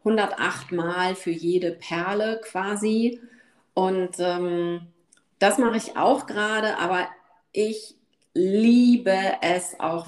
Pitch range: 175-215 Hz